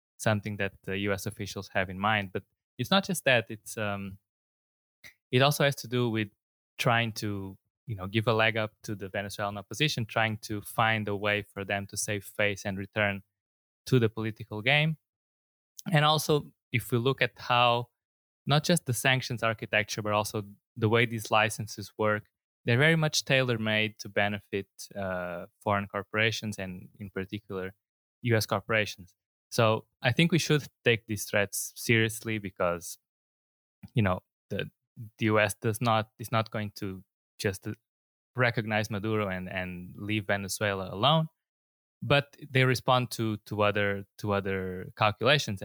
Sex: male